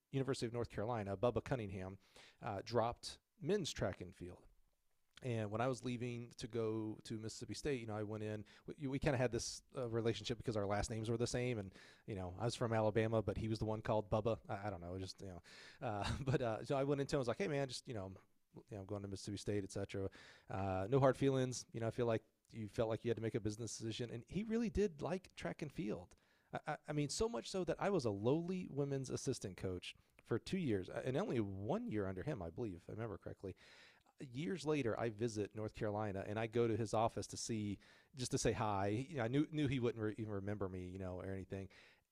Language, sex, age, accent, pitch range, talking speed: English, male, 40-59, American, 100-125 Hz, 245 wpm